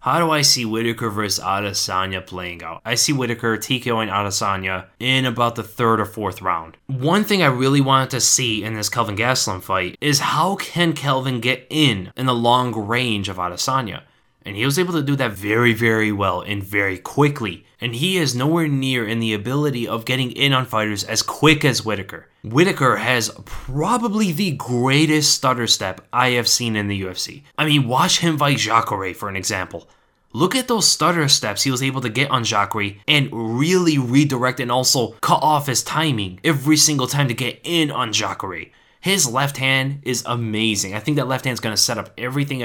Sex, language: male, English